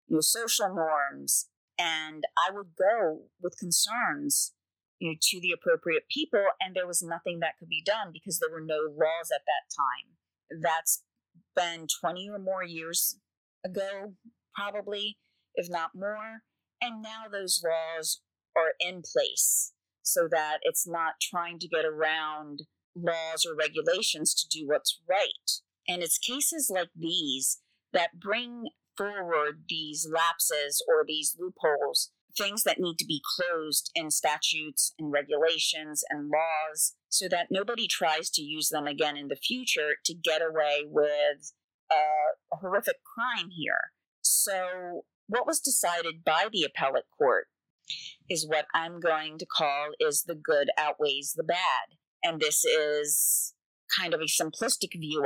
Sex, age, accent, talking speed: female, 40-59, American, 145 wpm